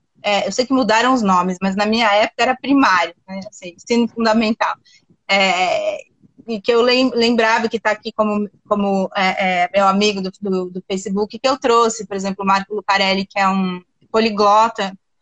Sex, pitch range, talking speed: female, 195-230 Hz, 185 wpm